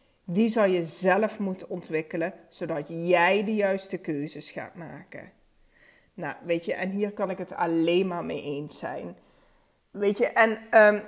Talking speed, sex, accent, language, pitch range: 160 wpm, female, Dutch, Dutch, 175-220 Hz